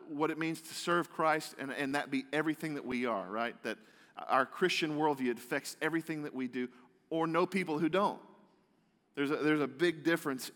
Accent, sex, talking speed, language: American, male, 195 wpm, English